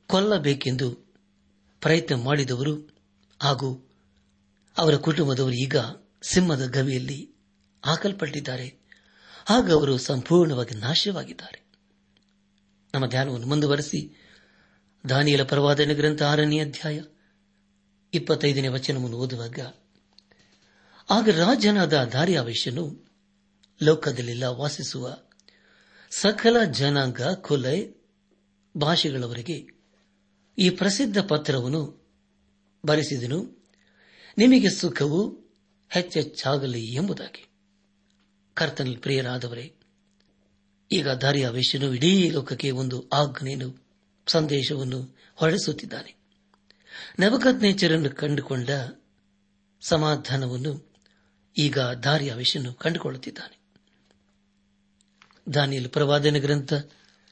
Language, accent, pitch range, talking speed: Kannada, native, 120-160 Hz, 65 wpm